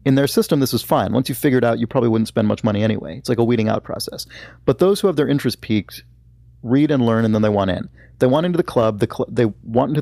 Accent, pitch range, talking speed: American, 100-130 Hz, 290 wpm